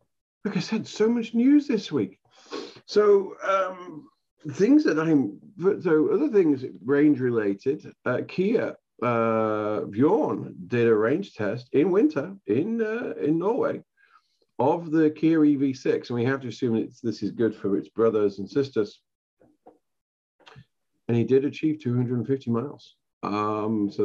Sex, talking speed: male, 150 wpm